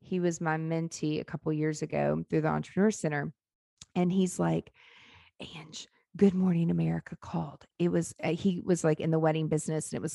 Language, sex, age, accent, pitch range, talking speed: English, female, 30-49, American, 155-200 Hz, 200 wpm